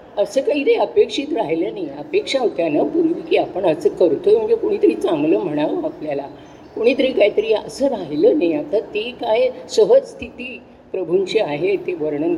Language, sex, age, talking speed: Marathi, female, 50-69, 155 wpm